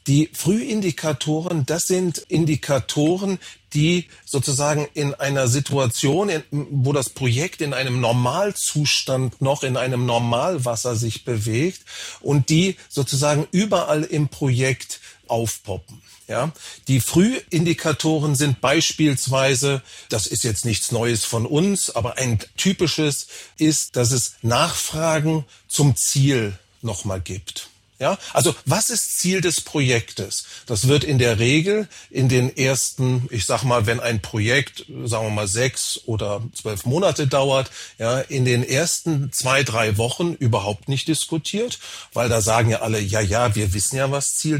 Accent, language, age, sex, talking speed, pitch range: German, German, 40-59, male, 140 wpm, 120-155 Hz